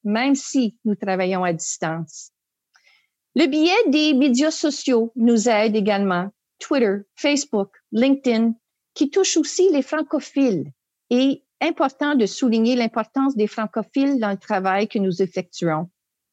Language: English